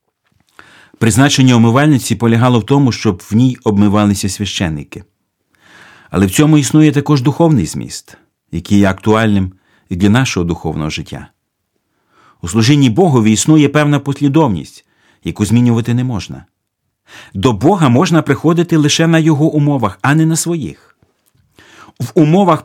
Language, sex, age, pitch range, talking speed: Ukrainian, male, 50-69, 105-150 Hz, 130 wpm